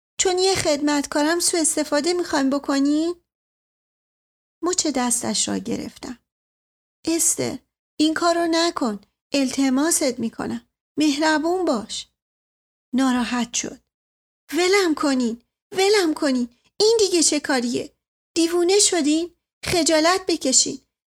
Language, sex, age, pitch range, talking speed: Persian, female, 40-59, 225-340 Hz, 95 wpm